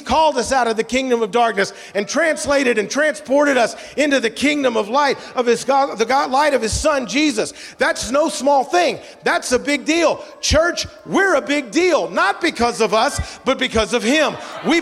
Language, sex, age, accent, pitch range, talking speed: English, male, 40-59, American, 250-320 Hz, 205 wpm